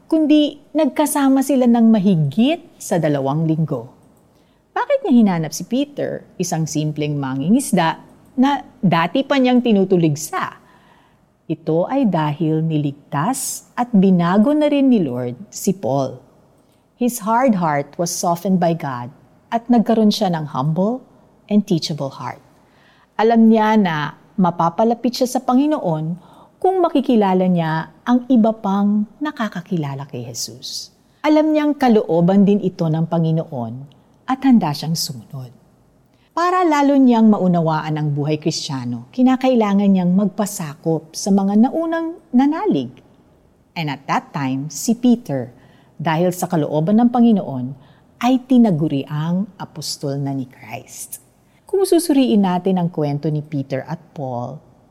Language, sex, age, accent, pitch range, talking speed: Filipino, female, 50-69, native, 150-245 Hz, 130 wpm